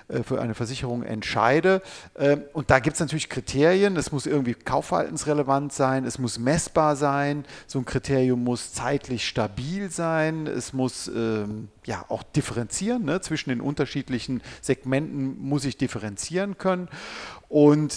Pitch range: 120-150 Hz